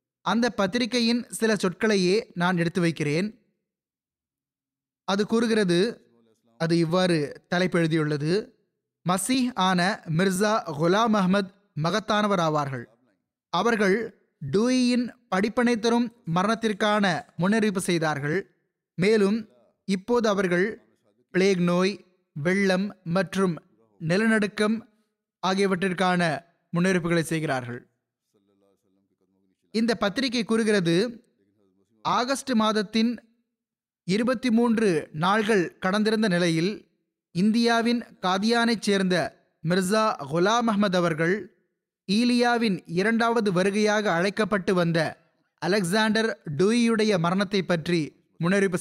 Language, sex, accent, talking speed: Tamil, male, native, 80 wpm